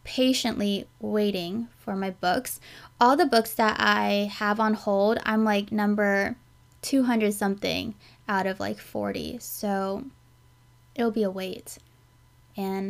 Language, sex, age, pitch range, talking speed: English, female, 20-39, 205-240 Hz, 130 wpm